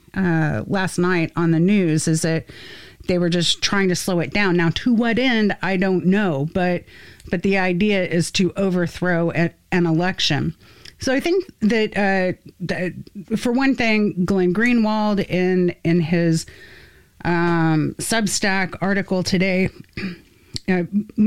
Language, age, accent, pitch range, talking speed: English, 30-49, American, 160-195 Hz, 145 wpm